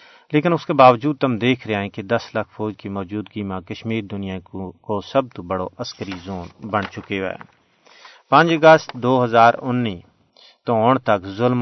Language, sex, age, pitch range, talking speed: Urdu, male, 40-59, 105-130 Hz, 180 wpm